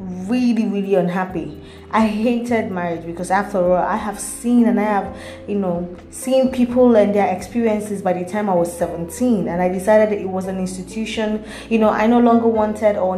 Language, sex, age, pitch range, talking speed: English, female, 20-39, 180-215 Hz, 195 wpm